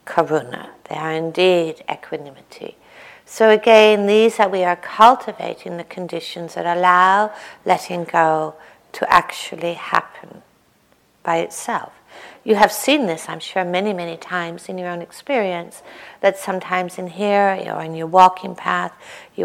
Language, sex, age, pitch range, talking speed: English, female, 60-79, 170-195 Hz, 140 wpm